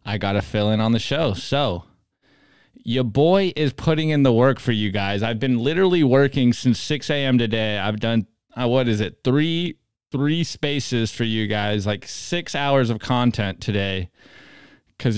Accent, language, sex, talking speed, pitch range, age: American, English, male, 180 wpm, 105-140 Hz, 20-39